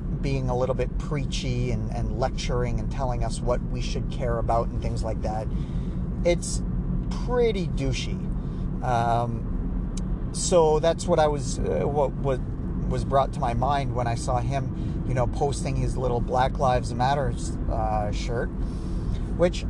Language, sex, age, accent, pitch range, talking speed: English, male, 40-59, American, 115-155 Hz, 160 wpm